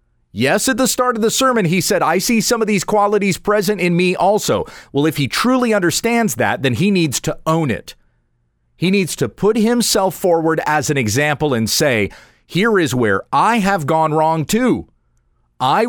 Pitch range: 130-205 Hz